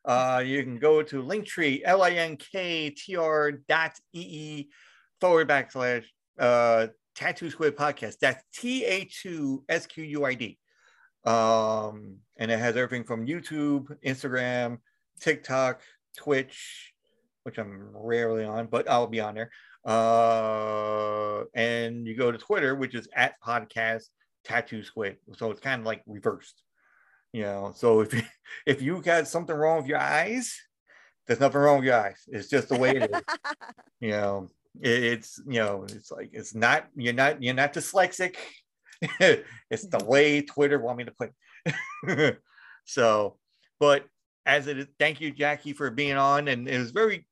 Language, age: English, 40-59